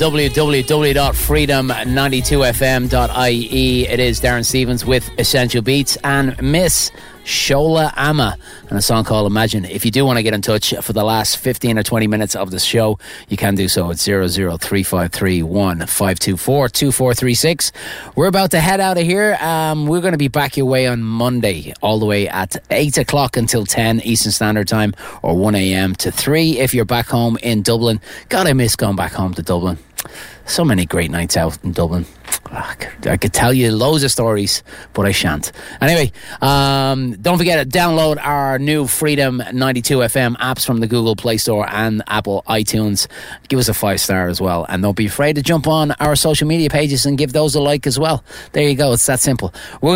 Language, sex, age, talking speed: English, male, 30-49, 190 wpm